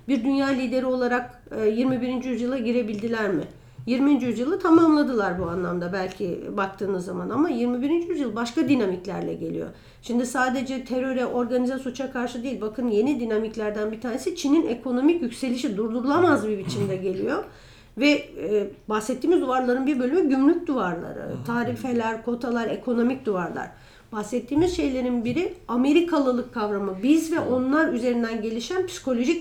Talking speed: 130 wpm